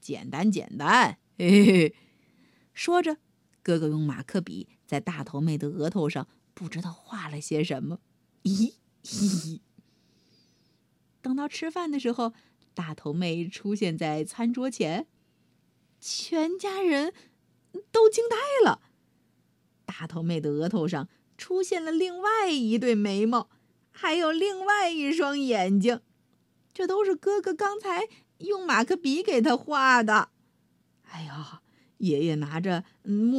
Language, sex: Chinese, female